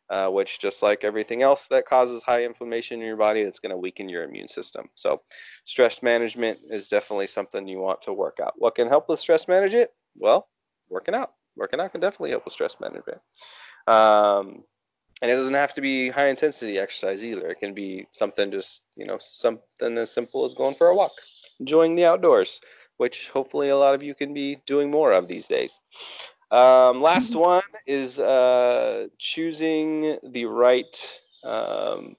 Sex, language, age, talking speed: male, English, 20-39, 185 wpm